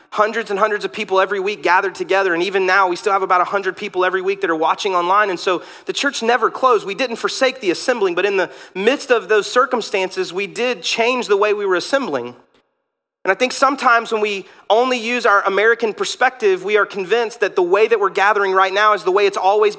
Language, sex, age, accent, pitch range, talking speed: English, male, 30-49, American, 195-275 Hz, 235 wpm